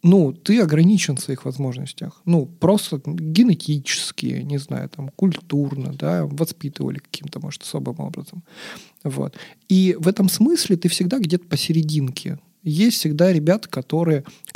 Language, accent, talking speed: Russian, native, 130 wpm